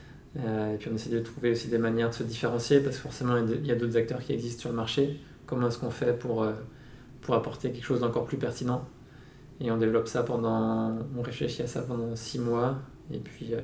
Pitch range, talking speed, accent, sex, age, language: 115-130 Hz, 235 wpm, French, male, 20-39, French